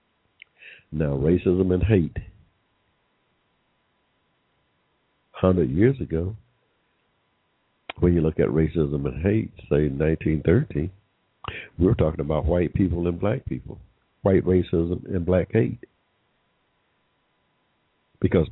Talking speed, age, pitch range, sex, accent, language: 105 wpm, 60-79, 75-90 Hz, male, American, English